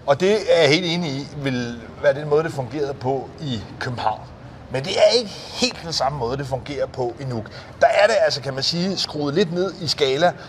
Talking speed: 235 wpm